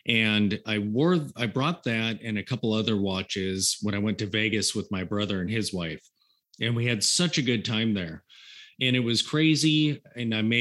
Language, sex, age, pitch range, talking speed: English, male, 30-49, 105-130 Hz, 210 wpm